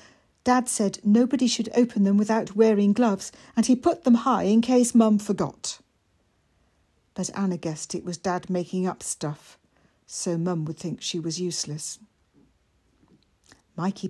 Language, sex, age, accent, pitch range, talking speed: English, female, 60-79, British, 175-225 Hz, 150 wpm